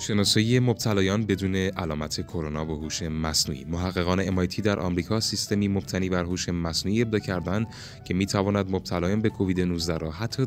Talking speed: 160 wpm